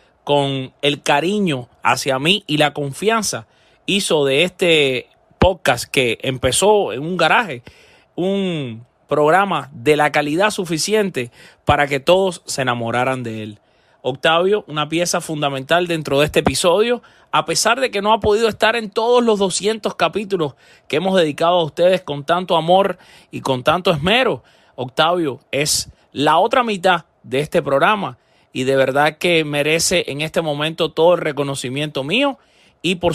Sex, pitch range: male, 140-190 Hz